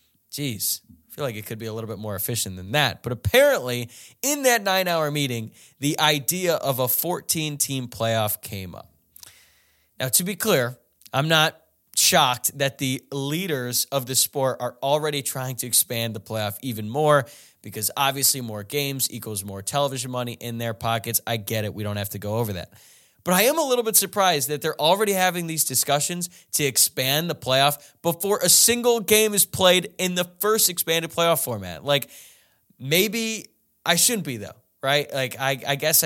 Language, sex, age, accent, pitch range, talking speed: English, male, 20-39, American, 110-155 Hz, 185 wpm